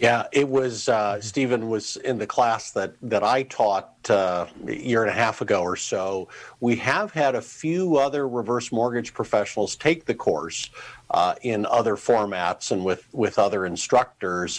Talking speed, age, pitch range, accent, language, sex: 175 wpm, 50-69, 105-135 Hz, American, English, male